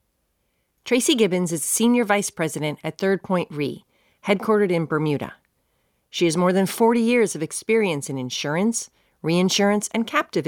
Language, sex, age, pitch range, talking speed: English, female, 40-59, 165-225 Hz, 150 wpm